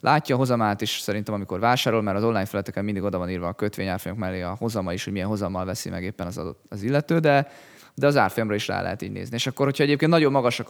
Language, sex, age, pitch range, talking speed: Hungarian, male, 20-39, 100-125 Hz, 250 wpm